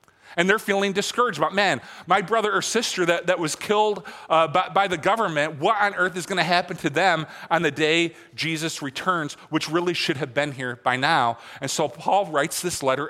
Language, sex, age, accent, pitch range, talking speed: English, male, 40-59, American, 145-185 Hz, 215 wpm